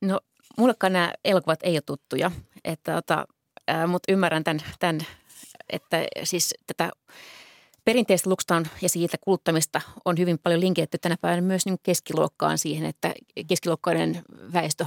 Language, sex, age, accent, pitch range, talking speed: Finnish, female, 30-49, native, 160-185 Hz, 130 wpm